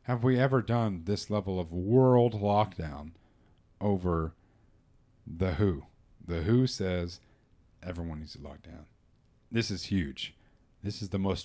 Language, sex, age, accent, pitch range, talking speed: English, male, 40-59, American, 100-155 Hz, 140 wpm